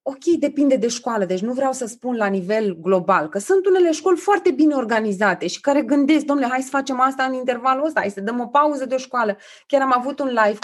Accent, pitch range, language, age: native, 220-310 Hz, Romanian, 20-39